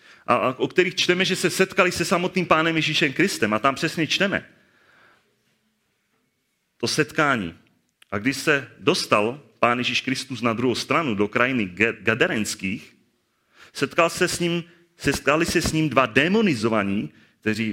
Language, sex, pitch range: Czech, male, 115-160 Hz